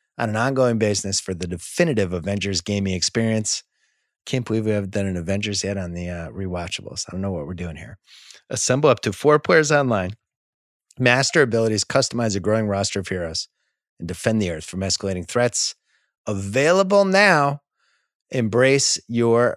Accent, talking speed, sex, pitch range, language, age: American, 165 wpm, male, 95-120 Hz, English, 30-49